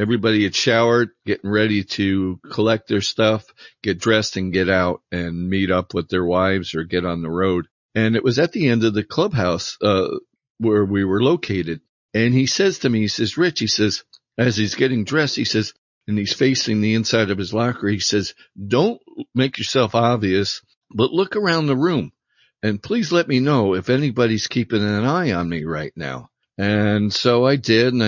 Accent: American